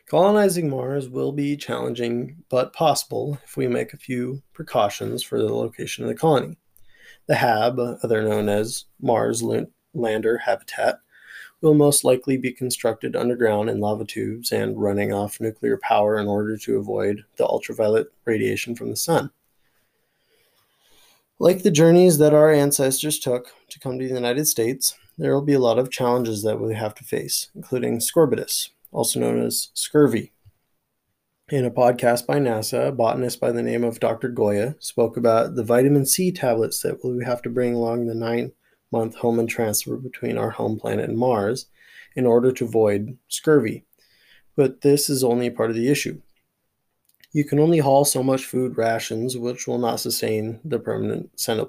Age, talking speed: 20-39, 170 wpm